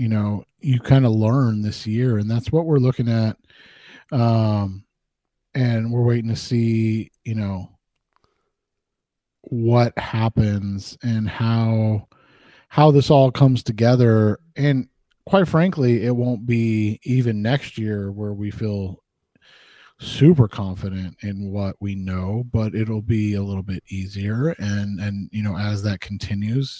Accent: American